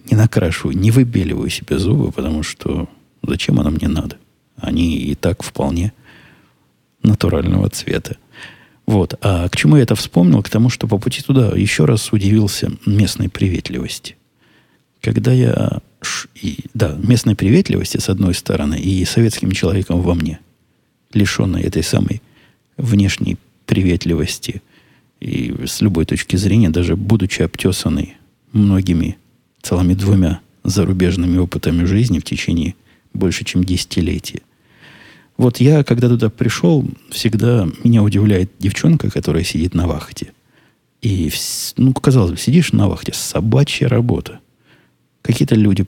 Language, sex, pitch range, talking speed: Russian, male, 90-115 Hz, 125 wpm